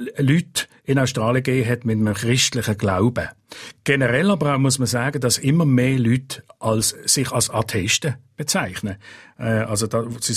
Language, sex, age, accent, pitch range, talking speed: German, male, 50-69, Austrian, 110-145 Hz, 140 wpm